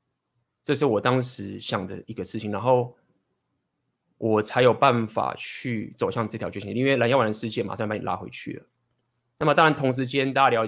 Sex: male